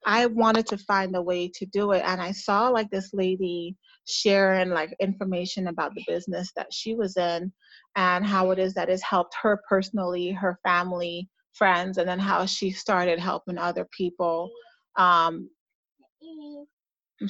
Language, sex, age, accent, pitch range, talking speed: English, female, 30-49, American, 180-210 Hz, 165 wpm